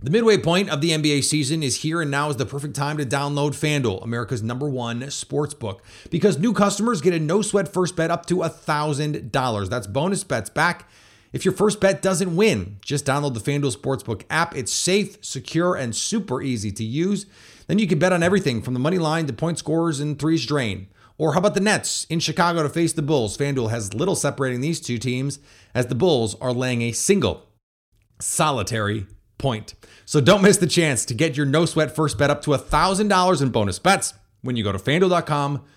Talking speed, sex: 210 wpm, male